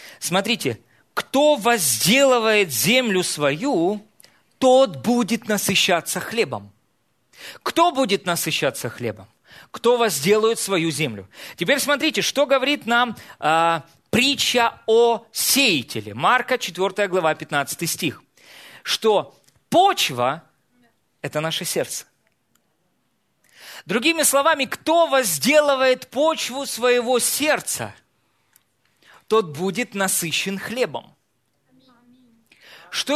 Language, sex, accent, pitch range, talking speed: Russian, male, native, 155-245 Hz, 85 wpm